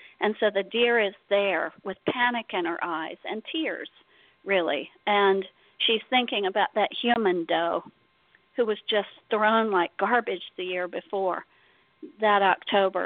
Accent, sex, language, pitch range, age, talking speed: American, female, English, 185-215 Hz, 50-69, 145 wpm